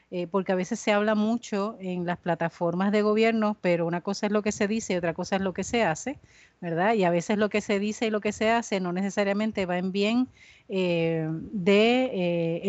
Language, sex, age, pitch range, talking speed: Spanish, female, 30-49, 185-220 Hz, 230 wpm